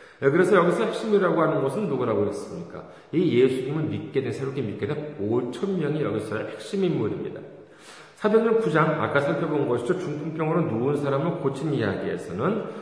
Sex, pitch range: male, 135-190 Hz